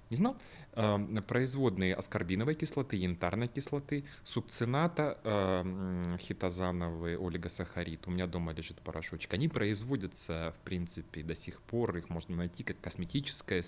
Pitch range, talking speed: 85-110 Hz, 115 wpm